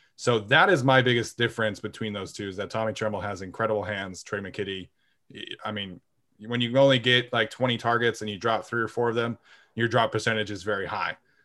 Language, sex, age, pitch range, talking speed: English, male, 20-39, 110-130 Hz, 215 wpm